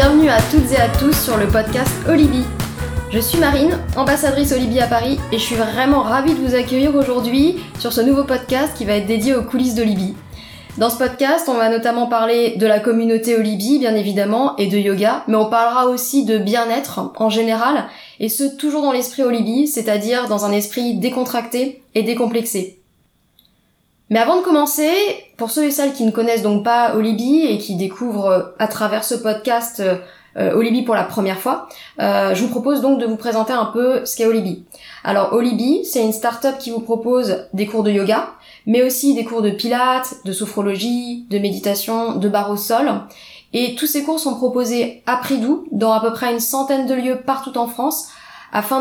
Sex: female